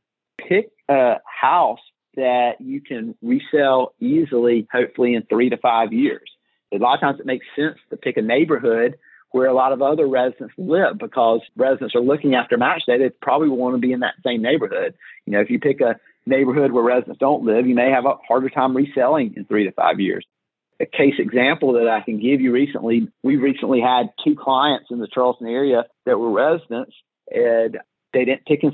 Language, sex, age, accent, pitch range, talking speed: English, male, 40-59, American, 120-150 Hz, 205 wpm